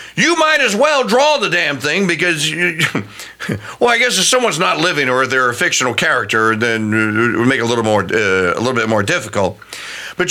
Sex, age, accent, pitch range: male, 50-69, American, 120-190 Hz